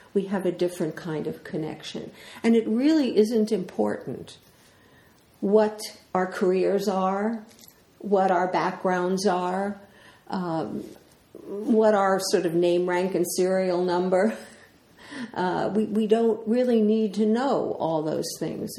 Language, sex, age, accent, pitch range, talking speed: English, female, 50-69, American, 185-220 Hz, 130 wpm